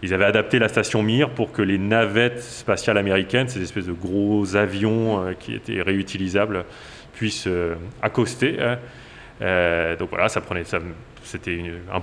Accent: French